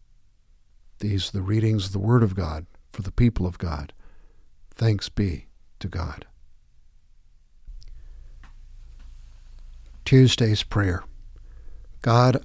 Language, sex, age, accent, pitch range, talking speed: English, male, 60-79, American, 95-120 Hz, 100 wpm